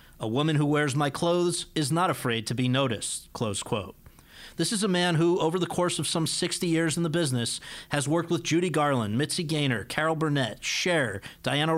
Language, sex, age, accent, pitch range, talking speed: English, male, 40-59, American, 130-165 Hz, 205 wpm